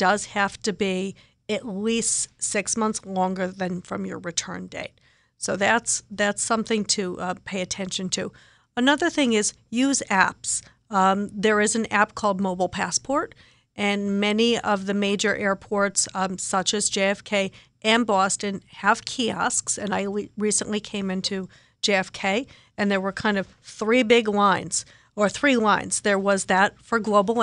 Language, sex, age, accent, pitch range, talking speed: English, female, 50-69, American, 195-220 Hz, 160 wpm